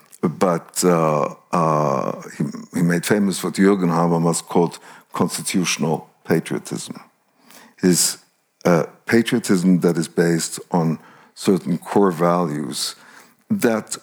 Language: Dutch